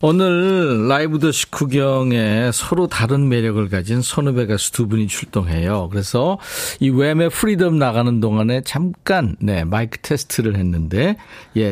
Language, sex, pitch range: Korean, male, 105-160 Hz